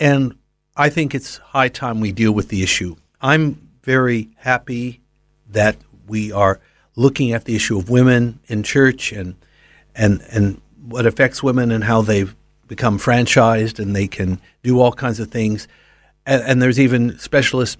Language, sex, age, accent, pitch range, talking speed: English, male, 60-79, American, 110-140 Hz, 165 wpm